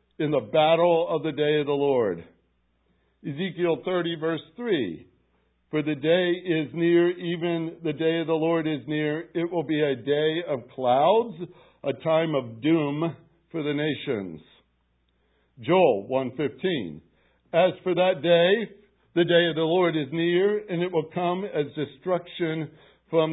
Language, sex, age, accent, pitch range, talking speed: English, male, 60-79, American, 145-180 Hz, 155 wpm